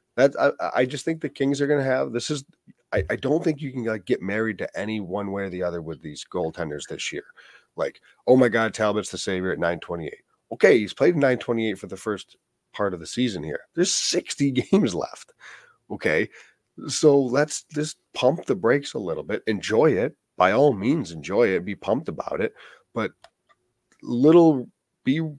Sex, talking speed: male, 200 wpm